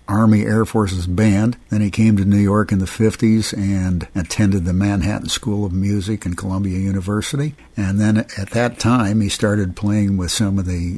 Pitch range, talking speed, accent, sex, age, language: 90-110 Hz, 190 wpm, American, male, 60-79, English